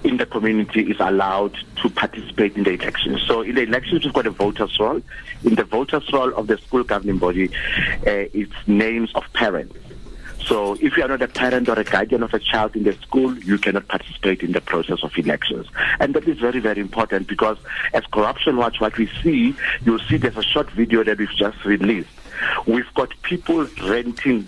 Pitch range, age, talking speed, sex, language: 100-120 Hz, 50-69, 210 wpm, male, English